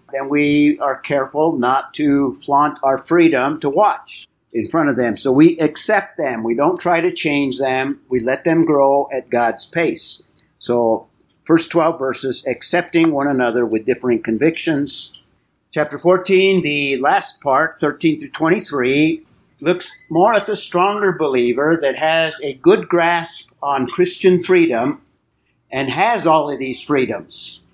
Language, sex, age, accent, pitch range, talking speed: English, male, 50-69, American, 130-165 Hz, 150 wpm